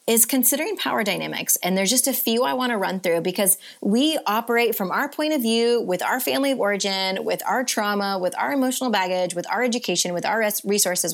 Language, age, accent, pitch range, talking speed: English, 30-49, American, 195-260 Hz, 215 wpm